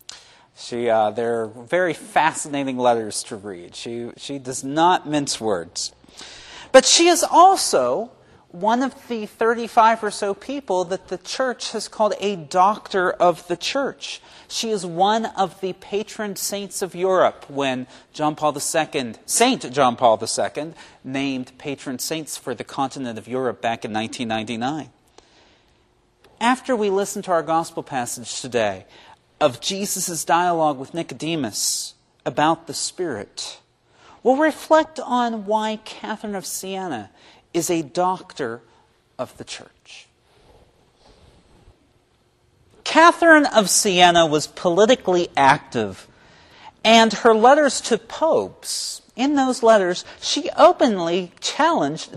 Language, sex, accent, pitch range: English, male, American, 150-225 Hz